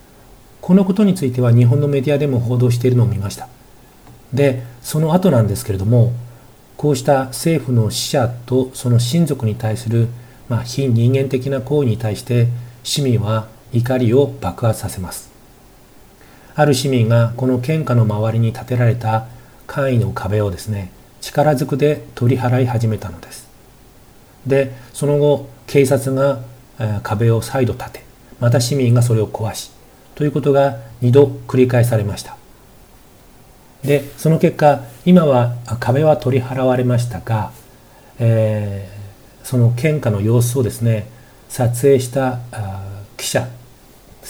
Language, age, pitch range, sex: Japanese, 40-59, 110-135 Hz, male